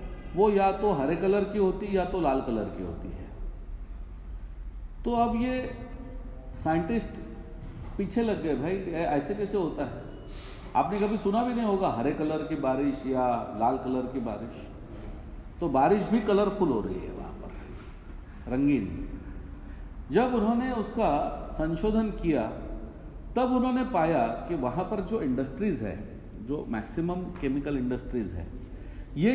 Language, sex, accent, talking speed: Hindi, male, native, 145 wpm